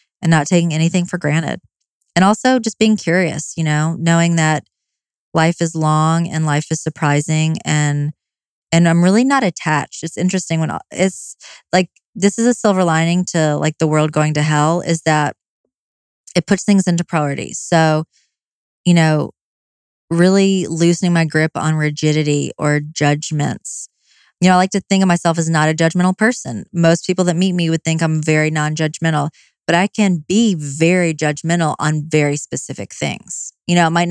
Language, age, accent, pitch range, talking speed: English, 20-39, American, 155-180 Hz, 180 wpm